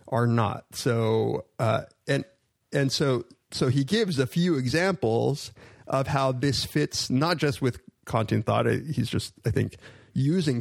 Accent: American